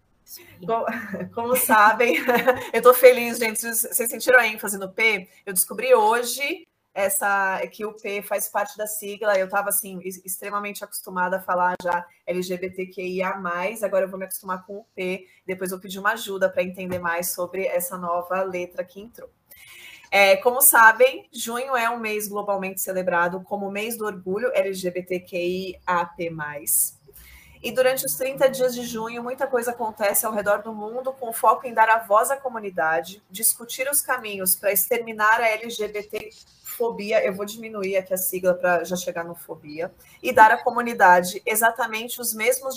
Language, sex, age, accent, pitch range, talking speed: Portuguese, female, 20-39, Brazilian, 185-230 Hz, 165 wpm